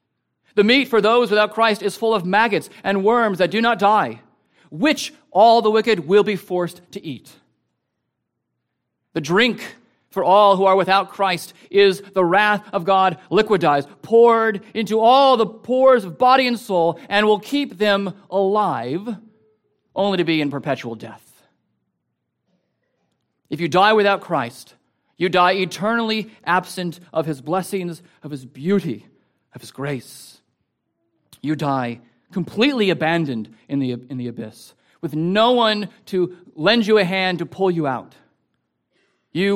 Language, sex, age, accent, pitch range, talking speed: English, male, 40-59, American, 140-205 Hz, 150 wpm